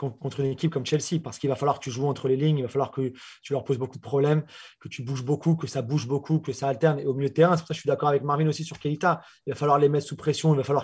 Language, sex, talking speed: French, male, 350 wpm